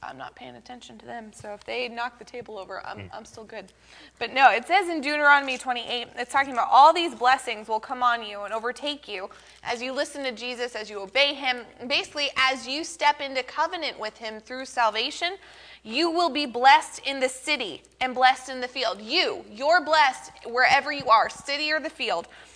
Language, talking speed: English, 205 wpm